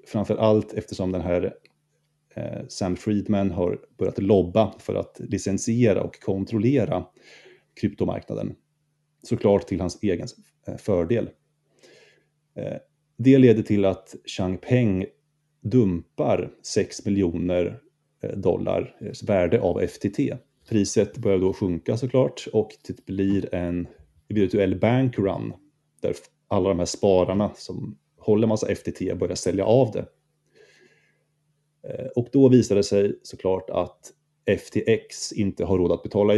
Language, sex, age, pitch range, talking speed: Swedish, male, 30-49, 95-140 Hz, 120 wpm